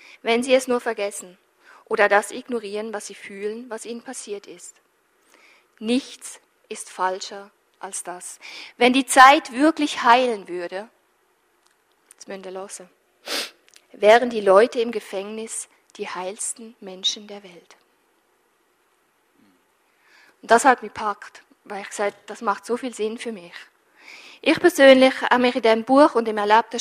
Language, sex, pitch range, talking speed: German, female, 210-265 Hz, 140 wpm